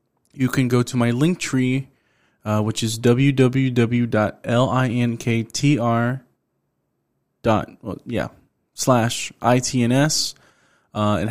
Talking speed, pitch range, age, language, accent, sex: 85 wpm, 110-140 Hz, 20-39, English, American, male